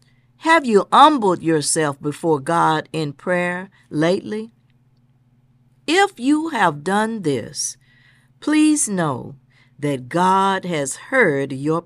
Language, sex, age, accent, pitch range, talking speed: English, female, 50-69, American, 130-200 Hz, 105 wpm